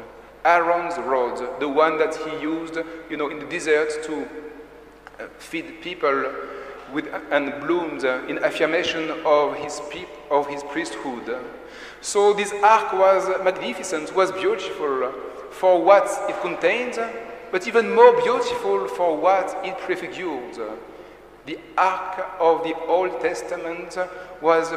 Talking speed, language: 125 wpm, English